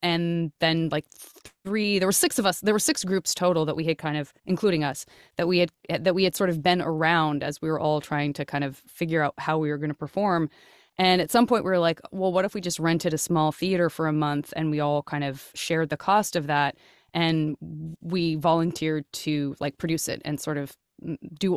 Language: English